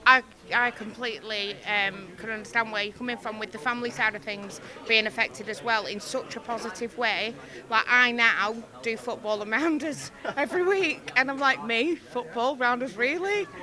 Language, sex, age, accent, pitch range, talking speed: English, female, 30-49, British, 215-255 Hz, 180 wpm